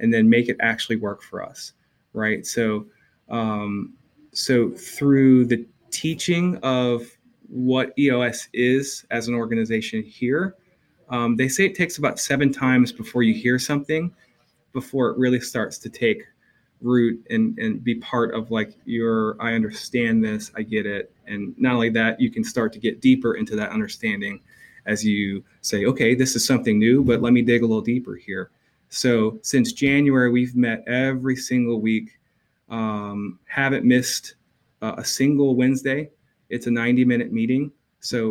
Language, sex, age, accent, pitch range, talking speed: English, male, 20-39, American, 110-135 Hz, 165 wpm